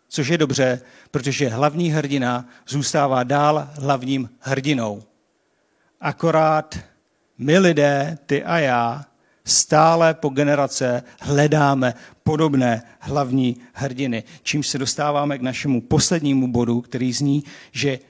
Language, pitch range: Czech, 135-175 Hz